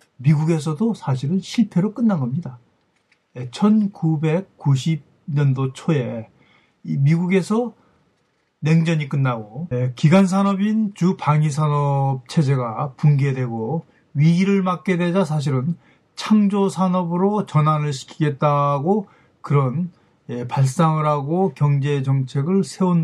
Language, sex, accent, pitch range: Korean, male, native, 145-195 Hz